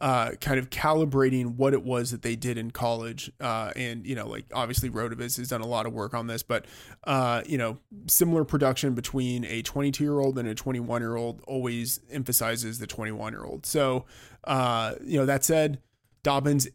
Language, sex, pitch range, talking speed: English, male, 115-135 Hz, 200 wpm